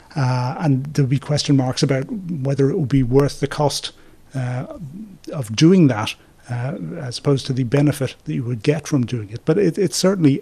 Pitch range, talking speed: 125-140 Hz, 195 wpm